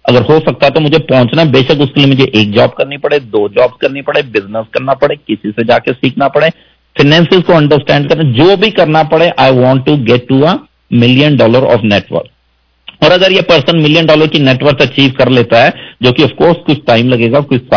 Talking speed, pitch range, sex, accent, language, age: 225 wpm, 125-160 Hz, male, Indian, English, 50-69